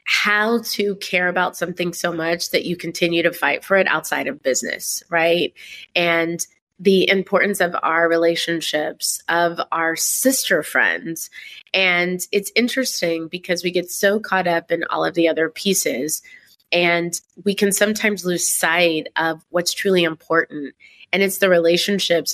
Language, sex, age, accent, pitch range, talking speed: English, female, 30-49, American, 165-195 Hz, 155 wpm